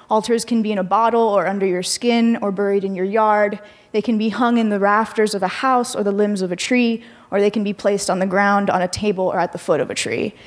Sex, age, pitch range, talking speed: female, 20-39, 195-225 Hz, 280 wpm